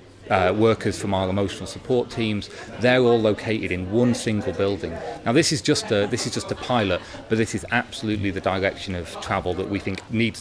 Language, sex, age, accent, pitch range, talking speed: English, male, 30-49, British, 95-110 Hz, 215 wpm